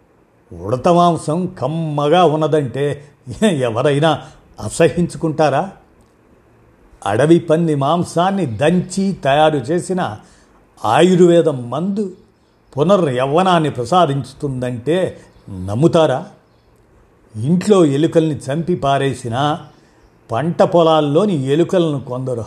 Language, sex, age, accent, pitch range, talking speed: Telugu, male, 50-69, native, 130-170 Hz, 65 wpm